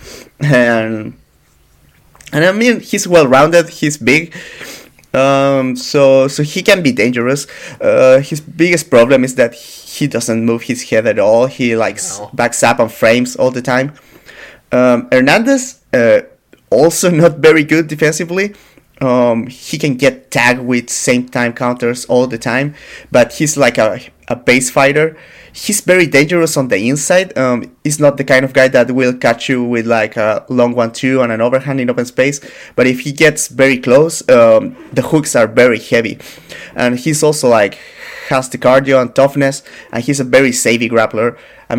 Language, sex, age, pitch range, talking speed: English, male, 30-49, 120-150 Hz, 175 wpm